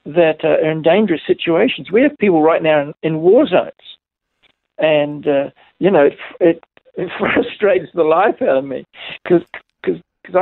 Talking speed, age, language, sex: 175 wpm, 60-79, English, male